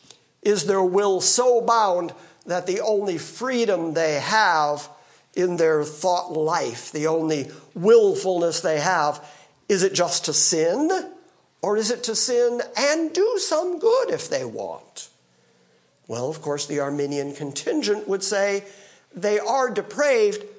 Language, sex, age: English, male, 50-69